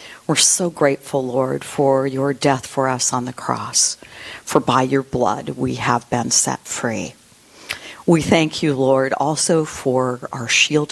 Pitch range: 130-155 Hz